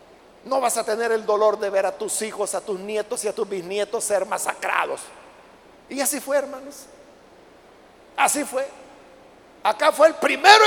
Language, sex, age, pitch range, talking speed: Spanish, male, 50-69, 215-310 Hz, 170 wpm